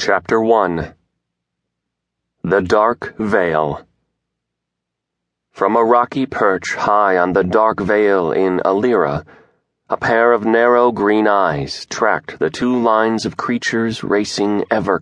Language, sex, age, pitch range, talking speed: English, male, 30-49, 80-105 Hz, 120 wpm